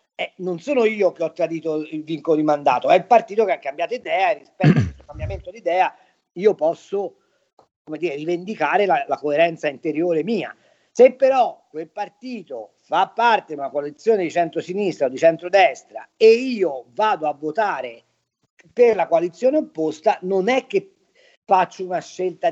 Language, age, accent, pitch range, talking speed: Italian, 40-59, native, 165-240 Hz, 170 wpm